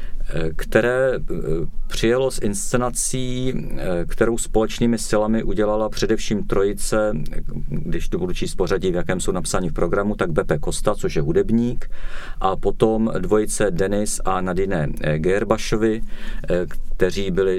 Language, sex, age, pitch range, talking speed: Czech, male, 50-69, 80-100 Hz, 125 wpm